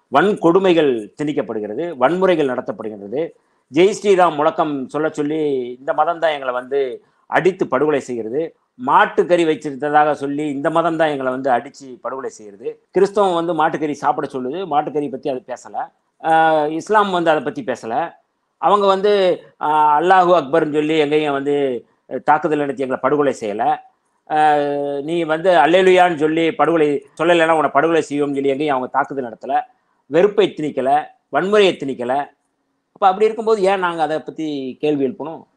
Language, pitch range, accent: Tamil, 140-180 Hz, native